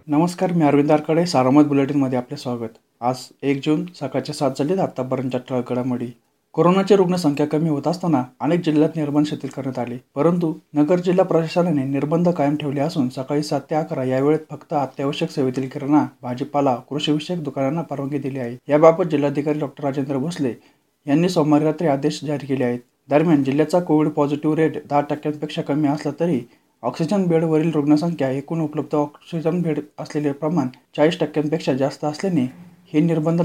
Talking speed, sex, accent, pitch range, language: 160 wpm, male, native, 140-160 Hz, Marathi